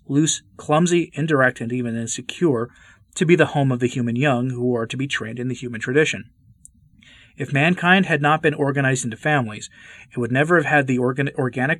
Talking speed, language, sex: 200 wpm, English, male